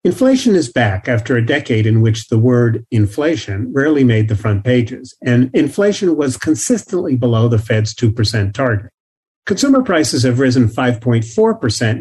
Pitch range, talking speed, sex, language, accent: 115-155 Hz, 150 wpm, male, English, American